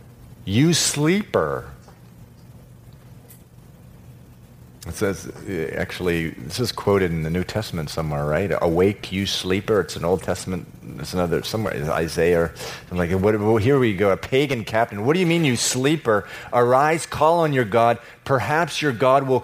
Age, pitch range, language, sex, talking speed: 40-59, 90-125 Hz, English, male, 150 wpm